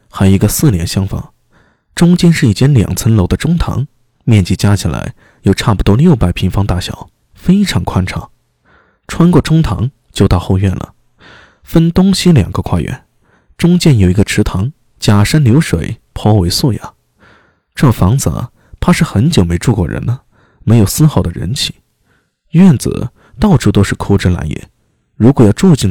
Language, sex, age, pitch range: Chinese, male, 20-39, 100-150 Hz